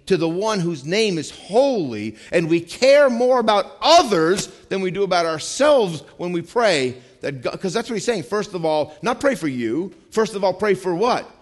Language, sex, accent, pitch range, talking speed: English, male, American, 125-190 Hz, 210 wpm